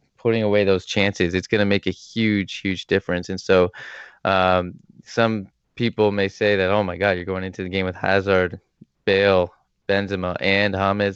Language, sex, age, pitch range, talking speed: English, male, 20-39, 90-100 Hz, 185 wpm